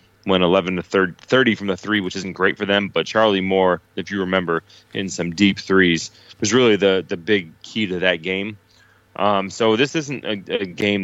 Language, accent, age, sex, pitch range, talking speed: English, American, 30-49, male, 90-105 Hz, 205 wpm